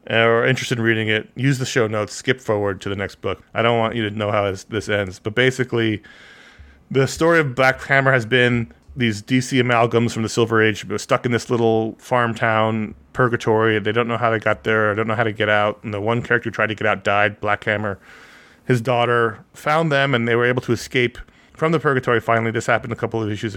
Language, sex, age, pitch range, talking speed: English, male, 30-49, 105-120 Hz, 240 wpm